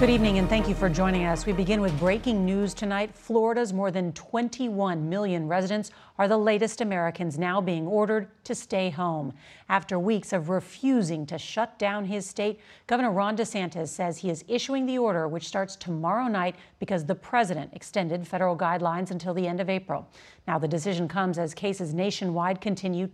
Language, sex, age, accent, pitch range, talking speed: English, female, 40-59, American, 180-215 Hz, 185 wpm